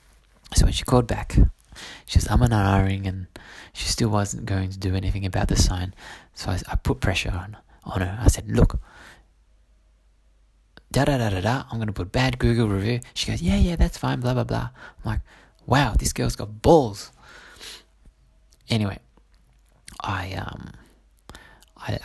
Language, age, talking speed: English, 20-39, 170 wpm